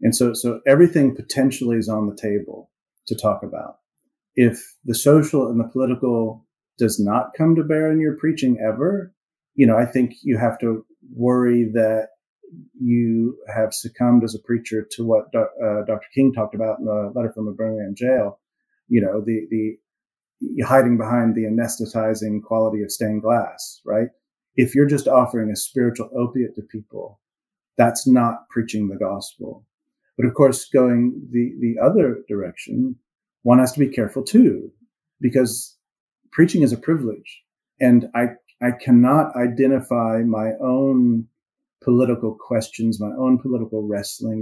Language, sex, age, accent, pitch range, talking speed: English, male, 40-59, American, 110-130 Hz, 155 wpm